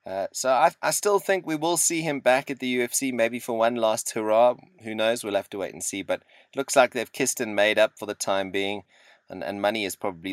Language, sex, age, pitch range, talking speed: English, male, 30-49, 100-125 Hz, 260 wpm